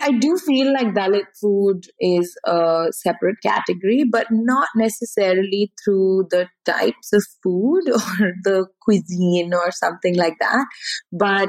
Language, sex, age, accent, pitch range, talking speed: English, female, 20-39, Indian, 175-220 Hz, 135 wpm